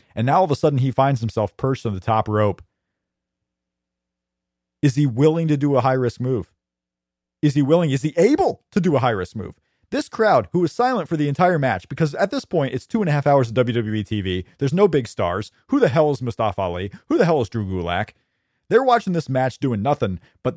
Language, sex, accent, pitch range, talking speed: English, male, American, 110-160 Hz, 230 wpm